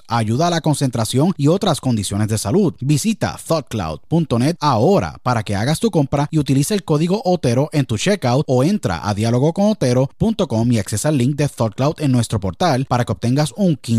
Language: Spanish